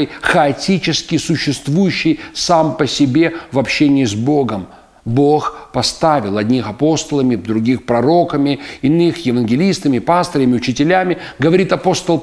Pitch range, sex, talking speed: 130-170 Hz, male, 105 wpm